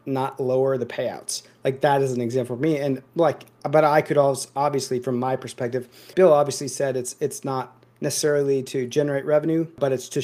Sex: male